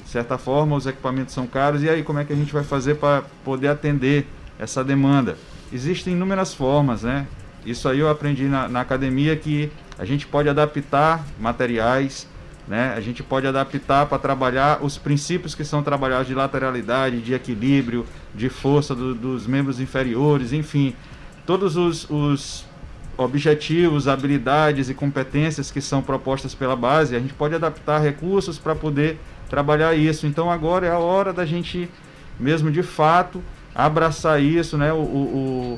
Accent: Brazilian